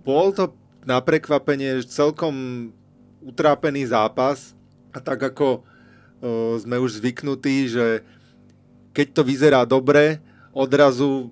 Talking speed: 105 wpm